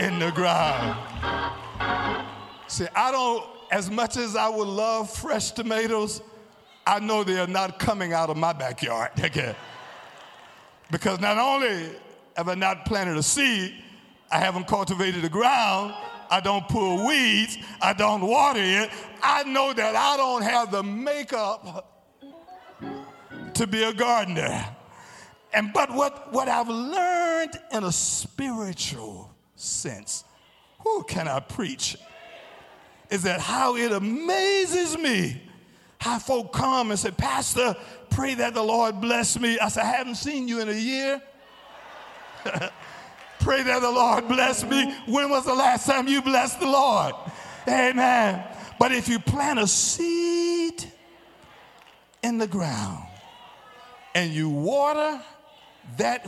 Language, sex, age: English, male, 50-69